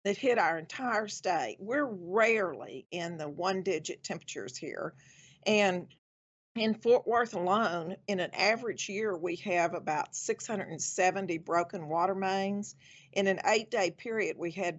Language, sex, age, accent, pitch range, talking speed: English, female, 50-69, American, 170-210 Hz, 140 wpm